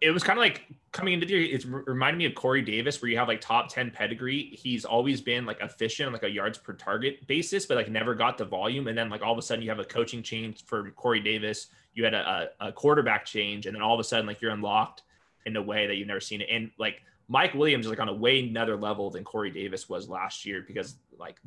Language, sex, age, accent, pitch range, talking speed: English, male, 20-39, American, 105-130 Hz, 270 wpm